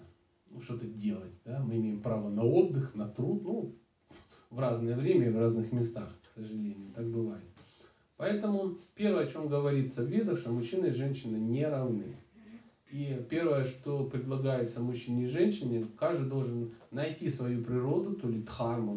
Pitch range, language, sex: 115-175 Hz, Russian, male